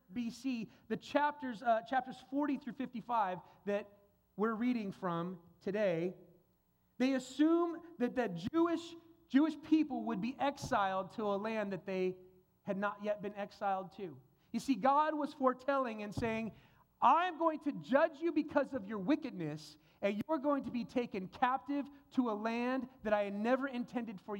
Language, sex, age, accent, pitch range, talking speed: English, male, 30-49, American, 200-270 Hz, 160 wpm